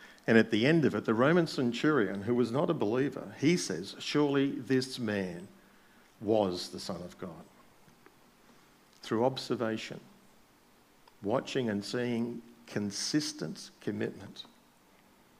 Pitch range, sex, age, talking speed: 105-135 Hz, male, 50-69, 120 wpm